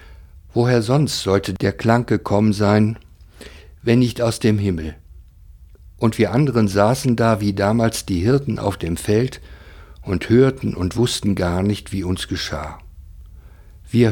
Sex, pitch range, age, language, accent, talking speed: male, 85-110 Hz, 60-79, German, German, 145 wpm